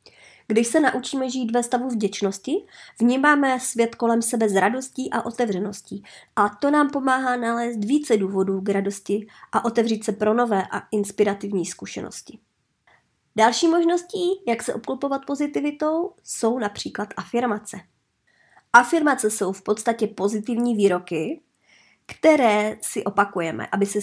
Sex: male